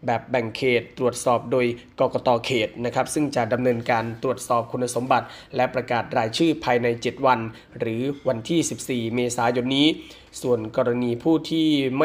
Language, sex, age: Thai, male, 20-39